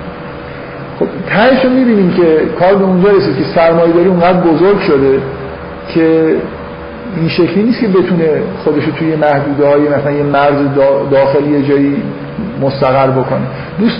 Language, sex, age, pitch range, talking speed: Persian, male, 50-69, 145-190 Hz, 125 wpm